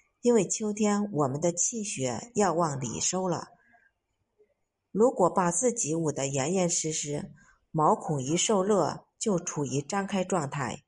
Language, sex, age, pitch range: Chinese, female, 50-69, 150-205 Hz